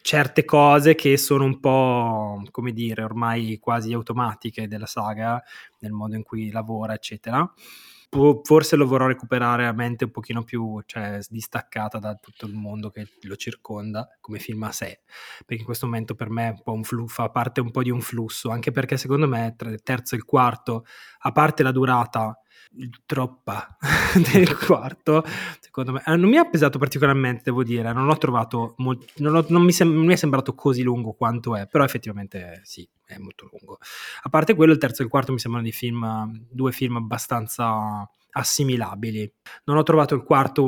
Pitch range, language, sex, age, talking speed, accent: 115-140 Hz, Italian, male, 20-39, 185 wpm, native